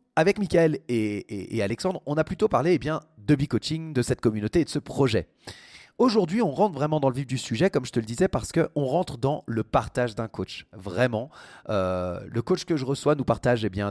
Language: French